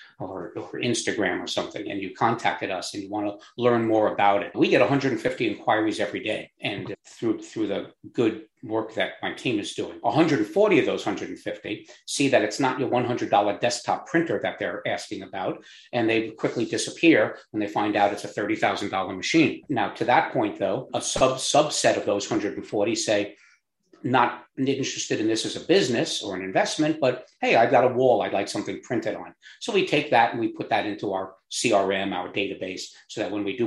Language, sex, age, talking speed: English, male, 50-69, 200 wpm